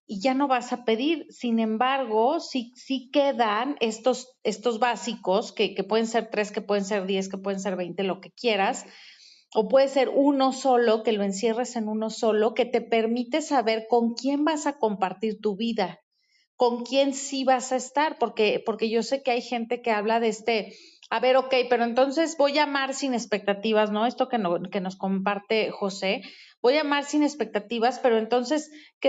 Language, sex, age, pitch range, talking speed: Spanish, female, 40-59, 210-260 Hz, 195 wpm